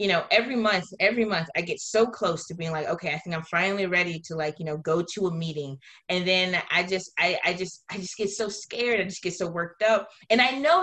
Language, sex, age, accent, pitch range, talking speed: English, female, 20-39, American, 165-220 Hz, 265 wpm